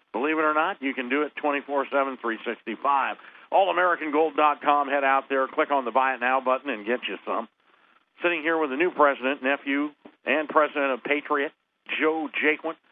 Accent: American